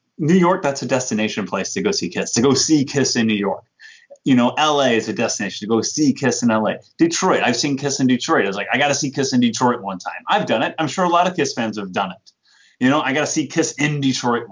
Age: 30-49